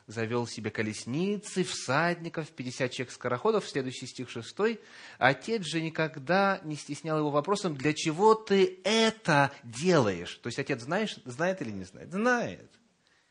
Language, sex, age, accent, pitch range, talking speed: Russian, male, 30-49, native, 115-170 Hz, 140 wpm